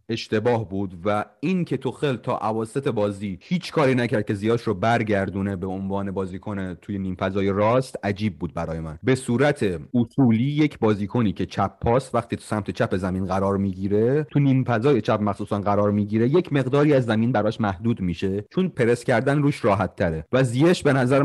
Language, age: Persian, 30-49